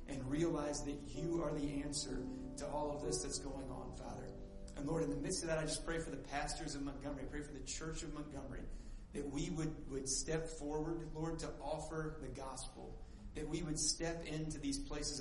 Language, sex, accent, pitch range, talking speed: English, male, American, 135-155 Hz, 215 wpm